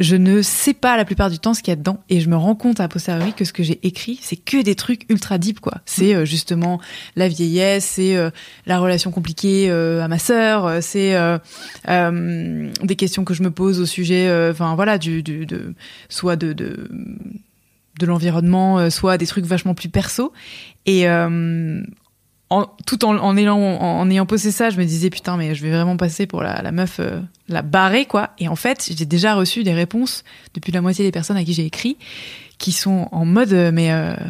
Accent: French